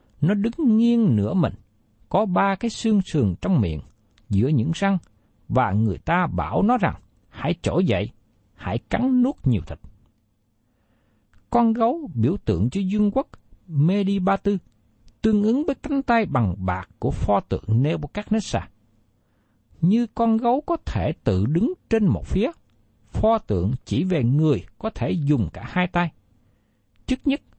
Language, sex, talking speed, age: Vietnamese, male, 155 wpm, 60-79